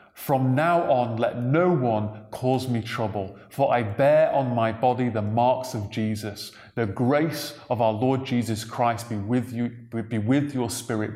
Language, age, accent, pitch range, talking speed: English, 30-49, British, 115-140 Hz, 180 wpm